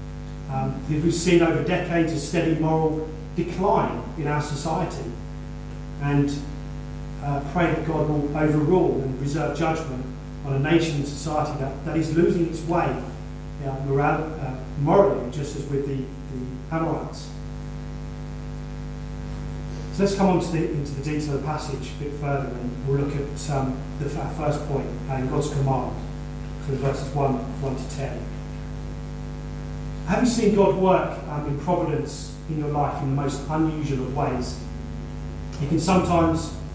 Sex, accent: male, British